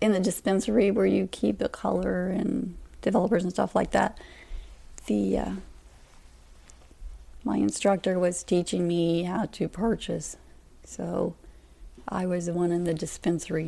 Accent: American